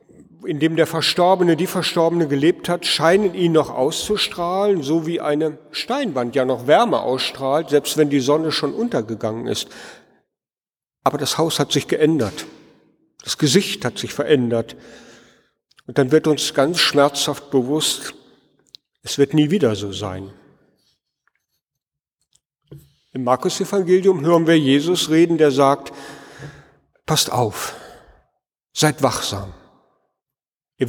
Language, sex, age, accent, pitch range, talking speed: German, male, 50-69, German, 130-165 Hz, 125 wpm